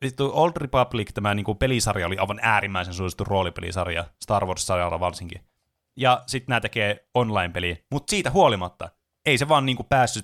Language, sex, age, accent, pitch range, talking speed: Finnish, male, 30-49, native, 90-130 Hz, 165 wpm